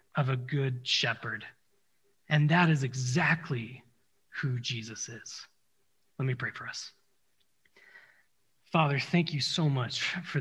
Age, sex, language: 30-49, male, English